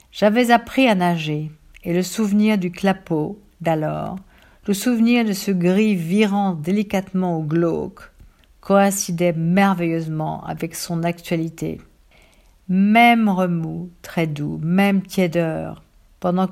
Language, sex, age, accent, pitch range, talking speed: English, female, 50-69, French, 160-195 Hz, 115 wpm